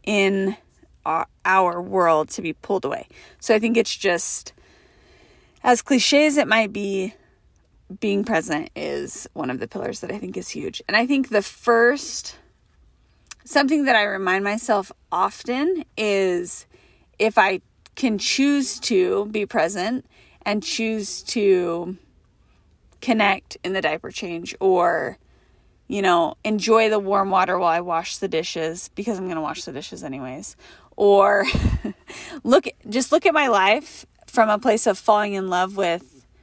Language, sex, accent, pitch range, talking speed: English, female, American, 185-230 Hz, 155 wpm